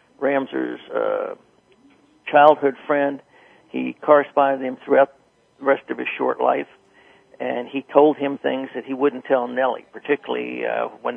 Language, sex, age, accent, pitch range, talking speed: English, male, 60-79, American, 130-155 Hz, 150 wpm